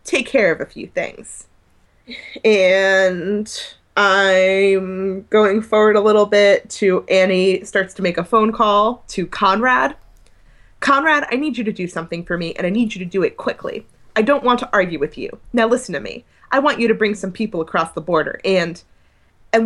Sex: female